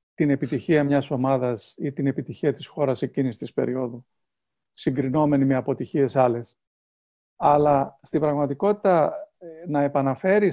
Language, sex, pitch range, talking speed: Greek, male, 140-185 Hz, 120 wpm